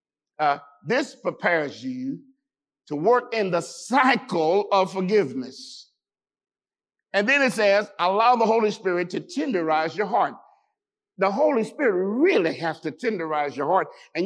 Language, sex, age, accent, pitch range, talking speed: English, male, 50-69, American, 185-270 Hz, 140 wpm